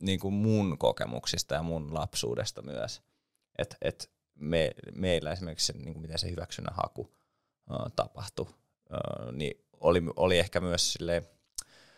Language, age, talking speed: Finnish, 20-39, 140 wpm